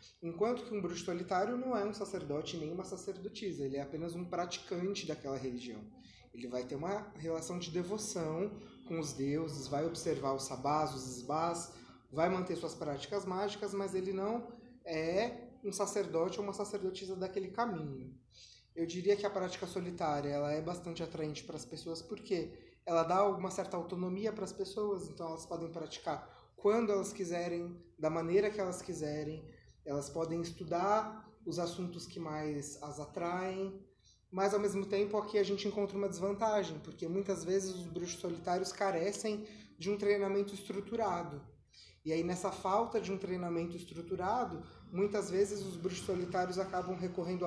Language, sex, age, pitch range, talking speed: Portuguese, male, 20-39, 165-200 Hz, 165 wpm